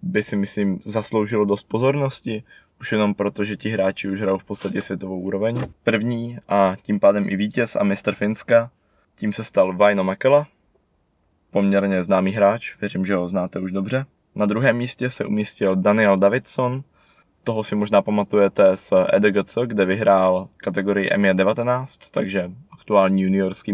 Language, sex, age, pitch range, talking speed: Czech, male, 20-39, 100-110 Hz, 155 wpm